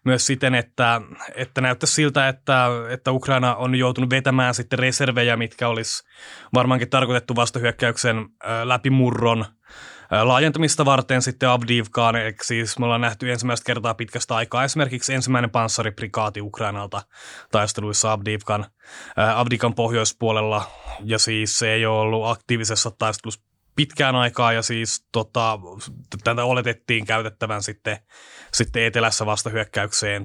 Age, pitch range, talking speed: 20-39, 110-130 Hz, 115 wpm